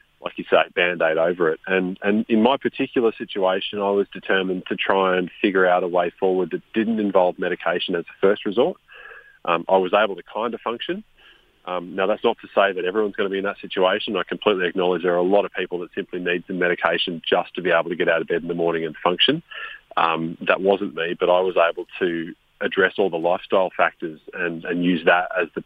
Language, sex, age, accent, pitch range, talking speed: English, male, 30-49, Australian, 90-110 Hz, 235 wpm